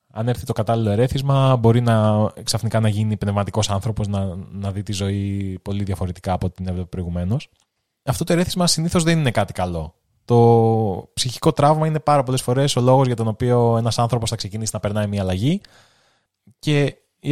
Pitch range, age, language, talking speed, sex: 105-140 Hz, 20-39, Greek, 180 wpm, male